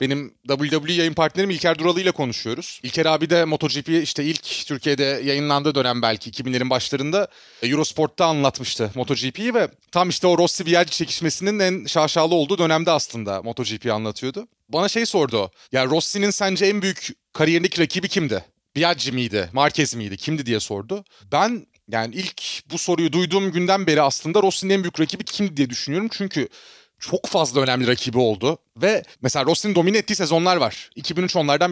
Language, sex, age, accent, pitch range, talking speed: Turkish, male, 30-49, native, 135-185 Hz, 160 wpm